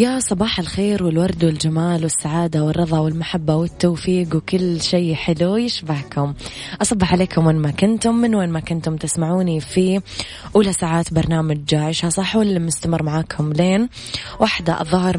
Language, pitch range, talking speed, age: Arabic, 155-185 Hz, 140 wpm, 20-39